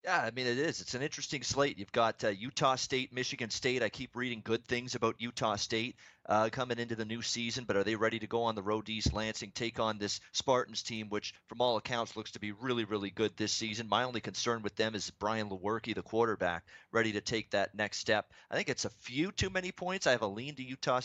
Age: 30-49